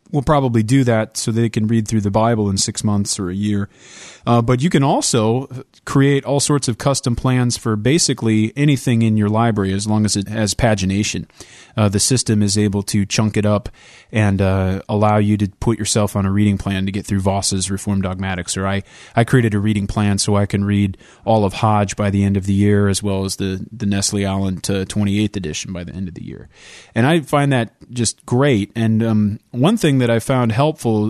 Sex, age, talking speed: male, 30-49, 220 wpm